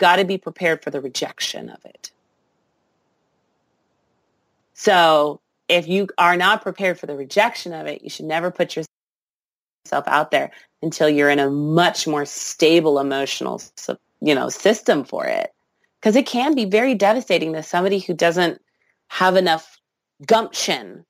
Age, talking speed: 30-49, 150 wpm